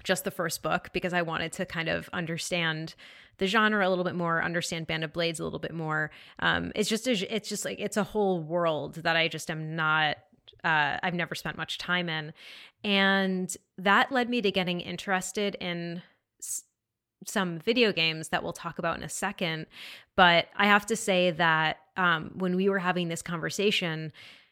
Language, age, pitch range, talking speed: English, 20-39, 165-195 Hz, 195 wpm